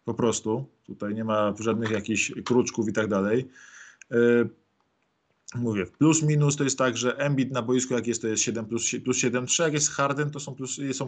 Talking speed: 195 wpm